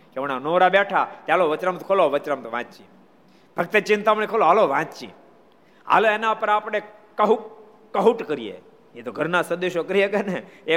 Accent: native